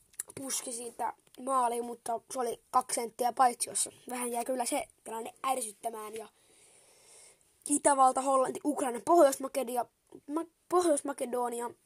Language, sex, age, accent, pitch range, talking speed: Finnish, female, 20-39, native, 235-290 Hz, 105 wpm